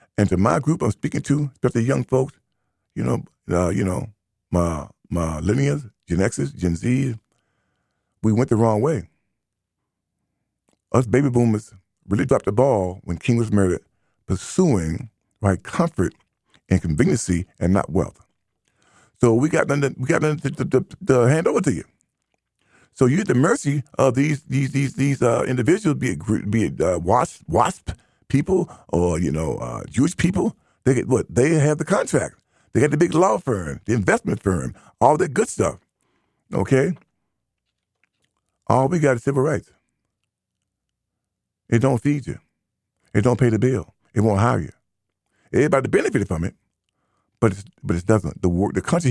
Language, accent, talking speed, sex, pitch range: English, American, 170 wpm, male, 100-140 Hz